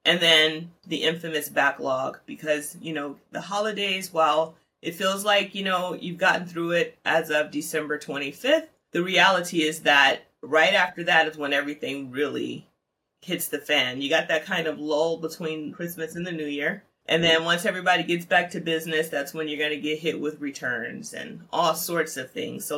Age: 30-49